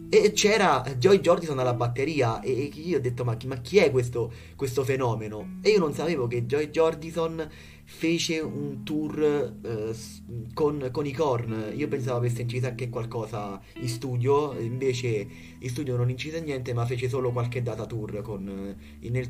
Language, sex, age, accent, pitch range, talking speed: Italian, male, 30-49, native, 115-140 Hz, 170 wpm